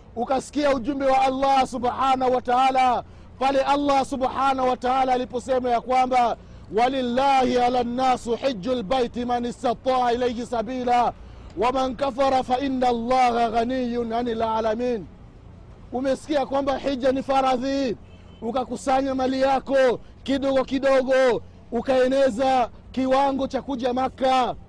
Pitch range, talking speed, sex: 240-270 Hz, 100 wpm, male